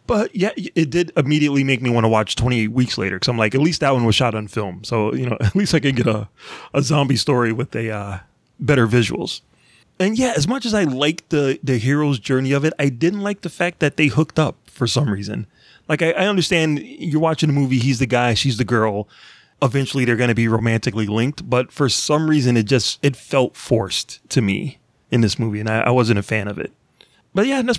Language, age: English, 30-49